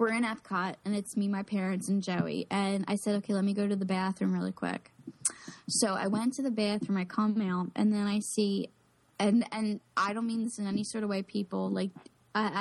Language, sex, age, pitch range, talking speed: English, female, 10-29, 195-245 Hz, 230 wpm